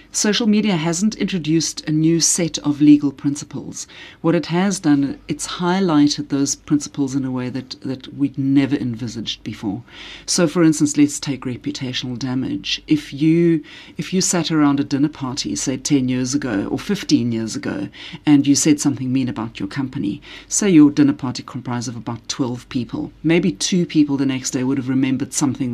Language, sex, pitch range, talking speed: English, female, 135-175 Hz, 180 wpm